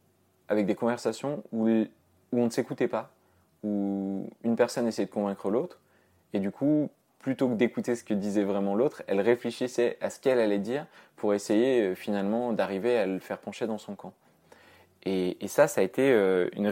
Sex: male